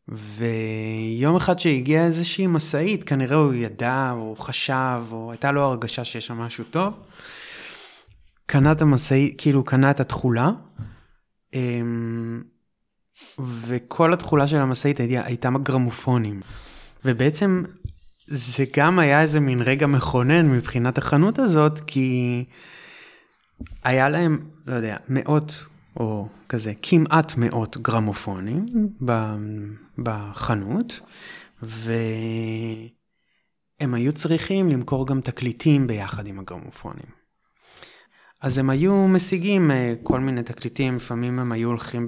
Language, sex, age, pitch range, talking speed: Hebrew, male, 20-39, 115-145 Hz, 110 wpm